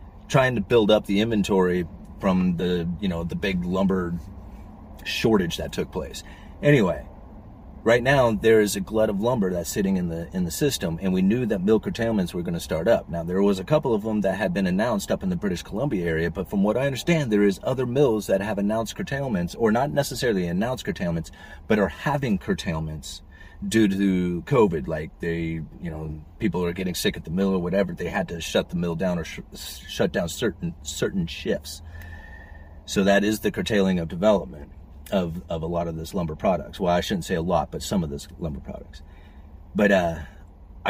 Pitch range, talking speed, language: 85-105 Hz, 210 wpm, English